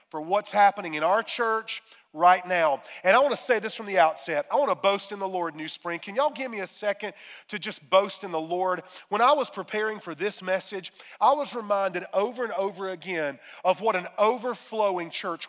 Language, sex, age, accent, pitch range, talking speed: English, male, 40-59, American, 185-235 Hz, 215 wpm